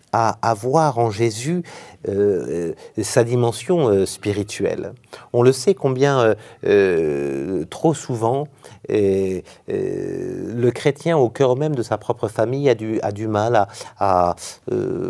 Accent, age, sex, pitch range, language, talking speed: French, 50-69, male, 110-150 Hz, French, 150 wpm